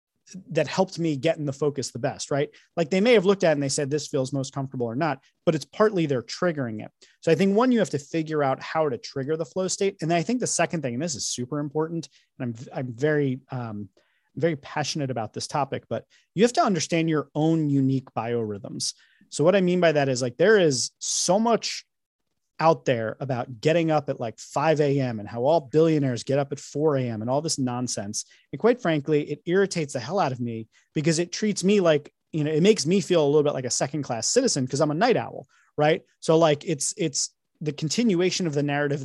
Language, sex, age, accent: English, male, 30-49, American